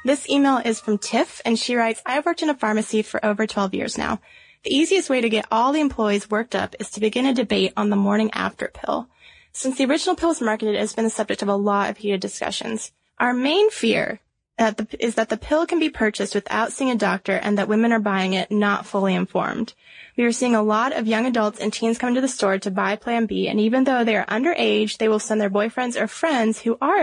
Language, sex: English, female